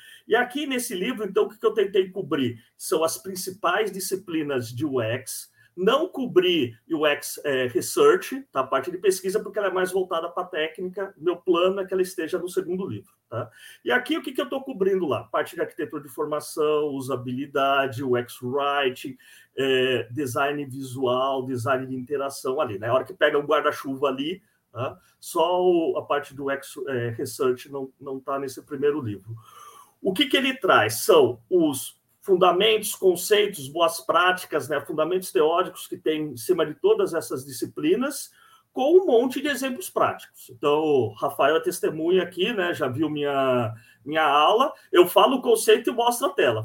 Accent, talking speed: Brazilian, 175 wpm